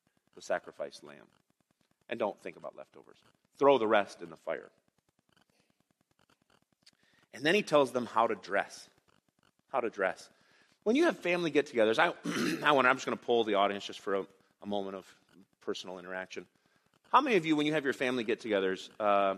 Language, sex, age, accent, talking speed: English, male, 30-49, American, 185 wpm